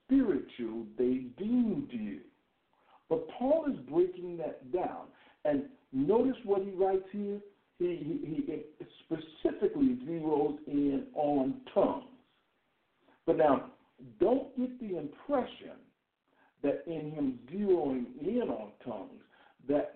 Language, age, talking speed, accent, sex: English, 60-79, 115 wpm, American, male